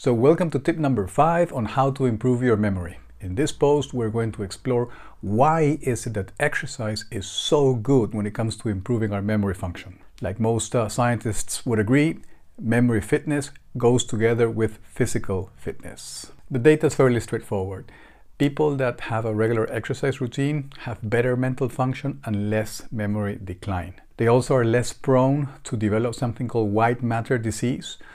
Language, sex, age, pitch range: English, male, 50-69, 105-130 Hz